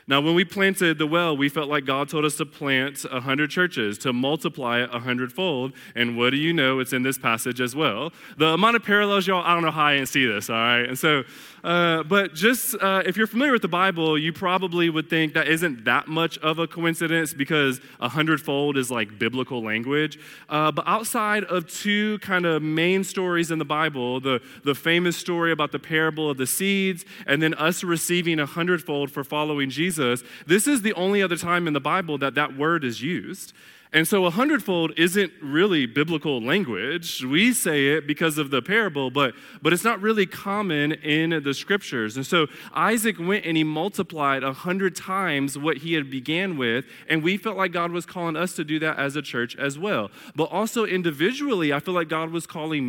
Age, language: 20-39, English